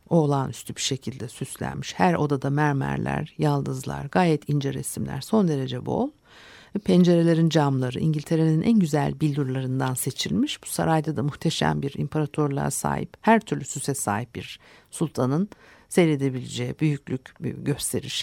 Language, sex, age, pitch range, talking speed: Turkish, female, 60-79, 135-170 Hz, 120 wpm